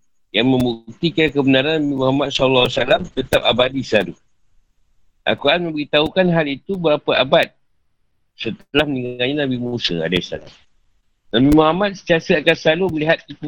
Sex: male